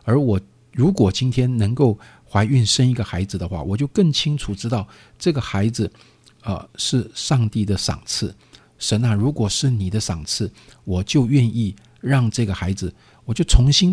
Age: 50-69